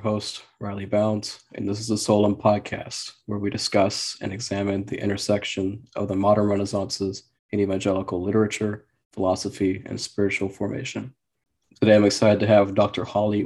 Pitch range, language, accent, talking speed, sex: 95-105 Hz, English, American, 150 wpm, male